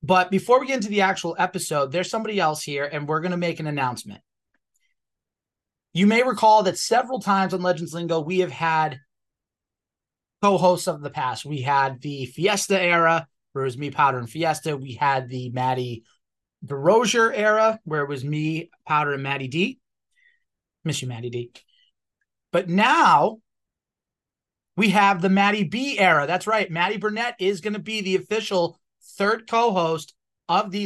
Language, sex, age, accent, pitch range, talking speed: English, male, 30-49, American, 150-195 Hz, 170 wpm